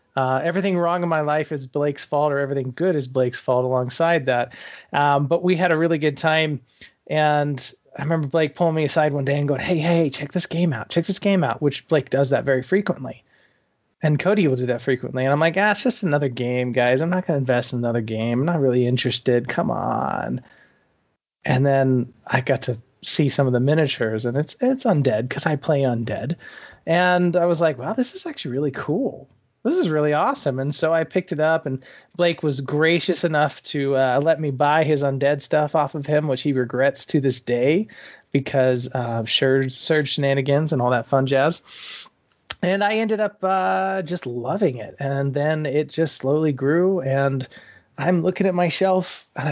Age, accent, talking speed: 20-39, American, 210 wpm